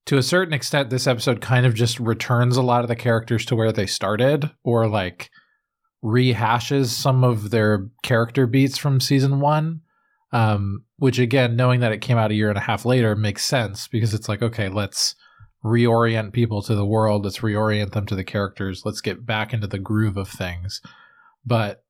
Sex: male